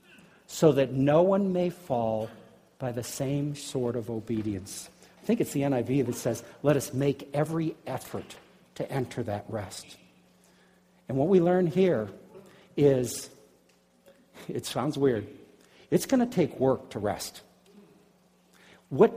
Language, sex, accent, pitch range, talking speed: English, male, American, 130-190 Hz, 140 wpm